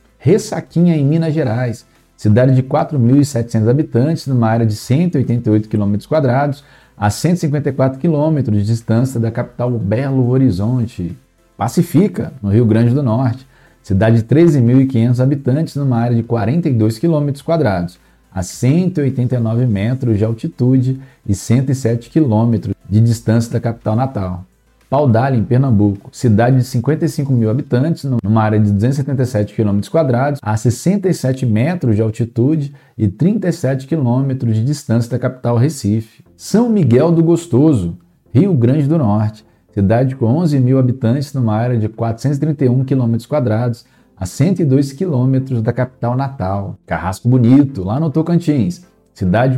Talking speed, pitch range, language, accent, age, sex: 130 wpm, 115-145 Hz, Portuguese, Brazilian, 40-59, male